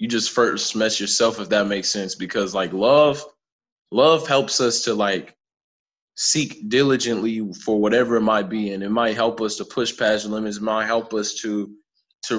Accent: American